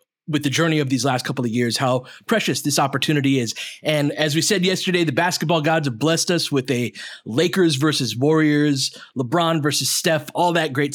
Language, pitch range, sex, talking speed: English, 125-155 Hz, male, 195 wpm